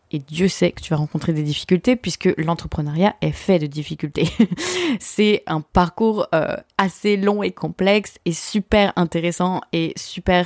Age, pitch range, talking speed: 20-39, 170-210 Hz, 160 wpm